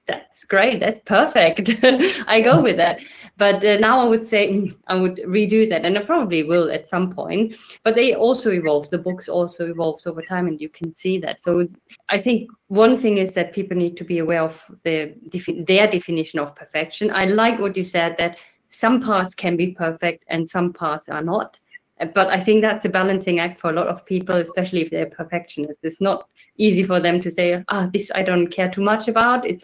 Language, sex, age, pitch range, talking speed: English, female, 20-39, 175-215 Hz, 220 wpm